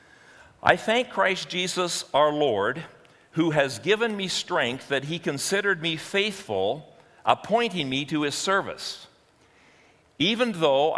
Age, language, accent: 50-69, English, American